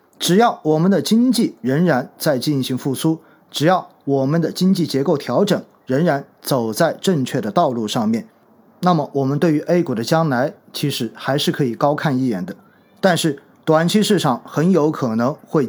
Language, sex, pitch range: Chinese, male, 135-180 Hz